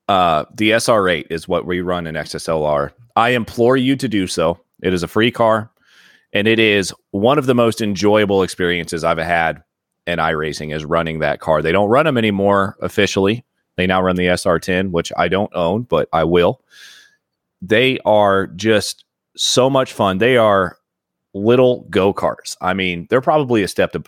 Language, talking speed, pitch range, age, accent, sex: English, 180 wpm, 90-115 Hz, 30-49, American, male